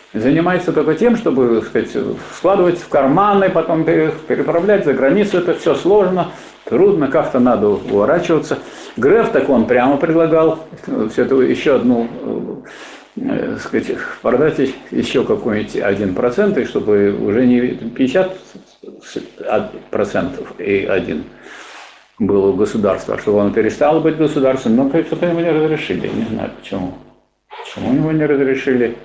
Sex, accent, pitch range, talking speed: male, native, 130-190 Hz, 130 wpm